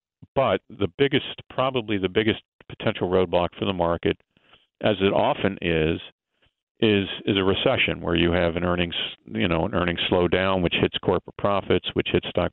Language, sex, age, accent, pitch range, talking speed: English, male, 50-69, American, 85-100 Hz, 170 wpm